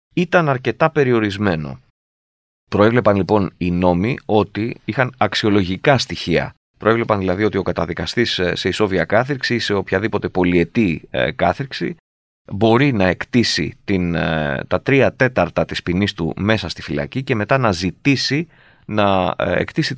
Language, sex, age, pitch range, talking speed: Greek, male, 30-49, 95-135 Hz, 130 wpm